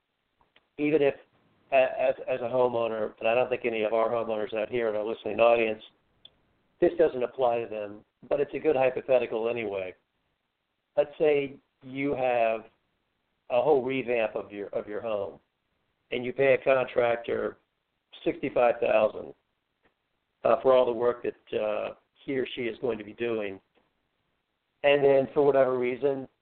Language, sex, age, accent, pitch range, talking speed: English, male, 50-69, American, 115-135 Hz, 155 wpm